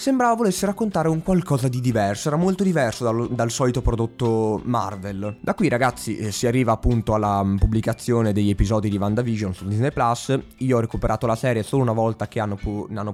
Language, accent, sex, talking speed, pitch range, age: Italian, native, male, 190 wpm, 110-130 Hz, 20-39